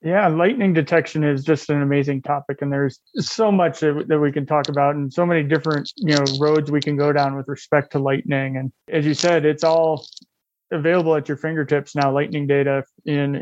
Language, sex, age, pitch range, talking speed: English, male, 20-39, 140-155 Hz, 205 wpm